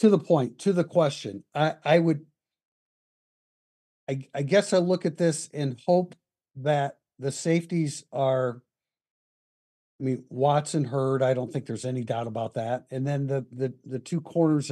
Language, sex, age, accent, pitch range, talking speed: English, male, 50-69, American, 125-160 Hz, 165 wpm